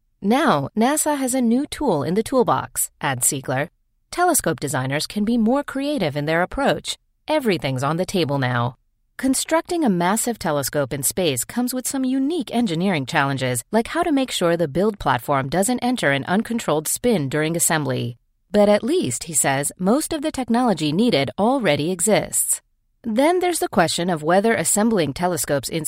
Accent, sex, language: American, female, English